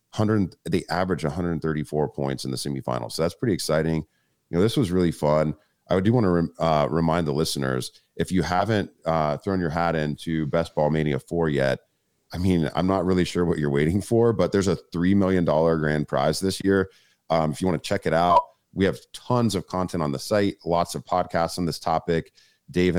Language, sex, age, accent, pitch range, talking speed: English, male, 40-59, American, 75-90 Hz, 215 wpm